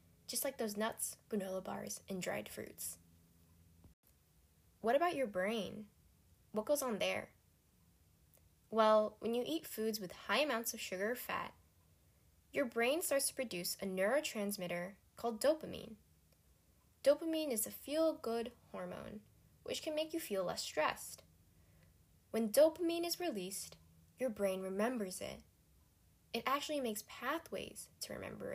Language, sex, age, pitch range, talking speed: English, female, 10-29, 185-270 Hz, 135 wpm